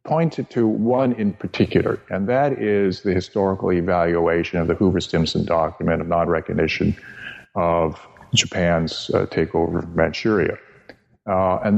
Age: 50-69